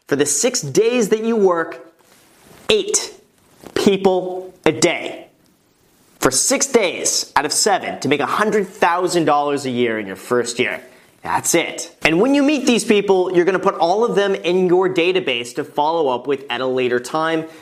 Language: English